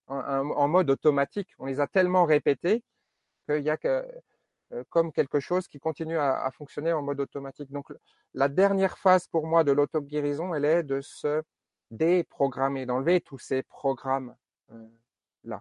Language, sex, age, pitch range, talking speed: French, male, 40-59, 130-170 Hz, 160 wpm